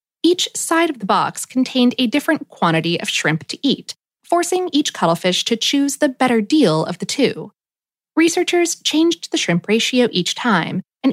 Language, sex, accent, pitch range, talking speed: English, female, American, 200-305 Hz, 175 wpm